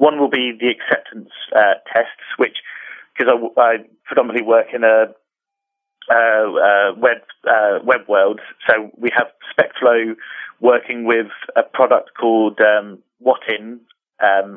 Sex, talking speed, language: male, 135 wpm, English